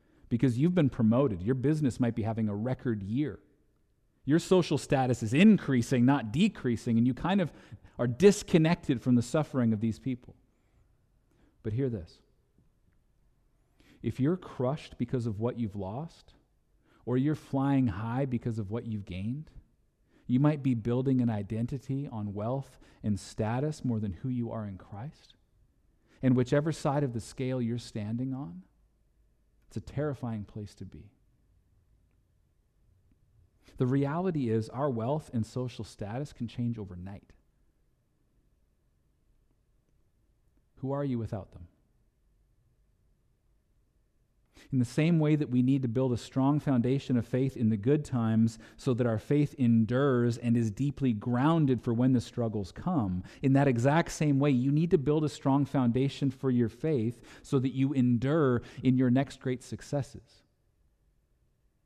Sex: male